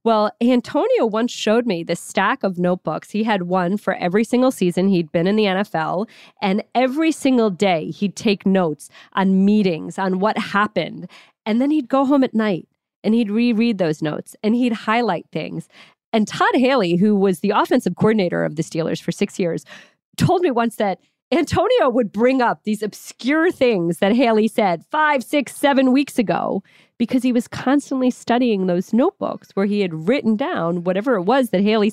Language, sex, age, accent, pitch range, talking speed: English, female, 40-59, American, 195-255 Hz, 185 wpm